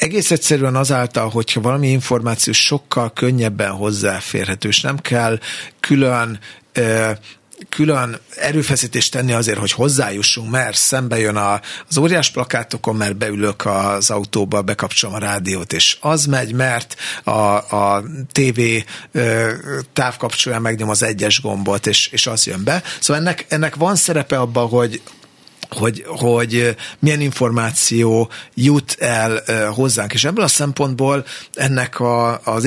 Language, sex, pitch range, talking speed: Hungarian, male, 110-140 Hz, 130 wpm